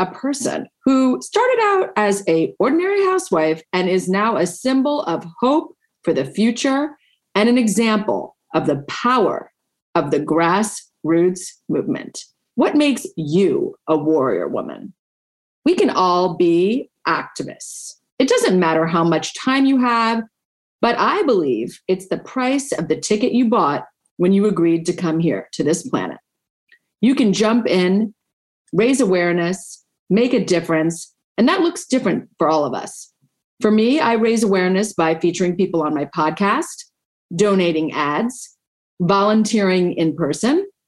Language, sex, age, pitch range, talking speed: English, female, 40-59, 170-255 Hz, 150 wpm